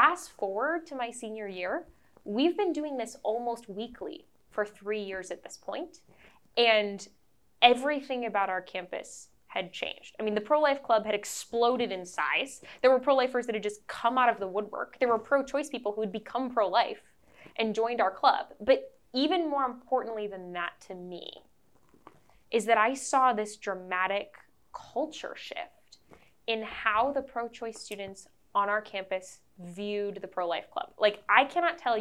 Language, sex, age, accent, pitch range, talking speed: English, female, 10-29, American, 195-245 Hz, 165 wpm